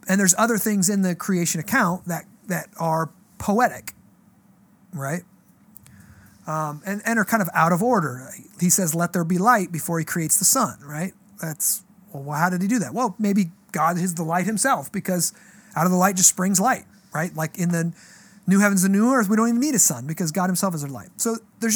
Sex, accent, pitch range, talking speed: male, American, 175-205 Hz, 220 wpm